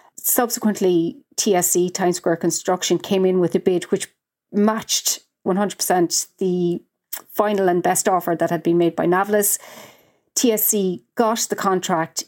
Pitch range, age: 170-200 Hz, 30-49